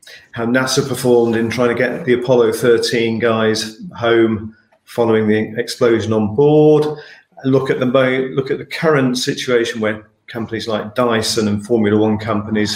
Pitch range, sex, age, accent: 110-130 Hz, male, 40-59, British